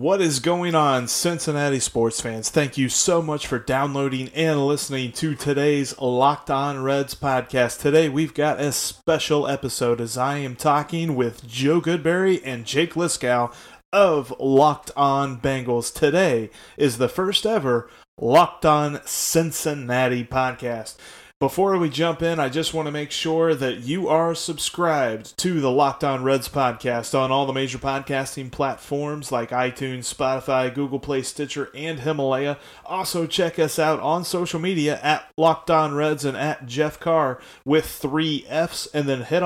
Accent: American